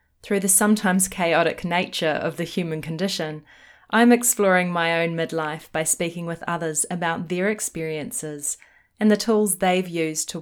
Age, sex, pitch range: 20-39, female, 150-190 Hz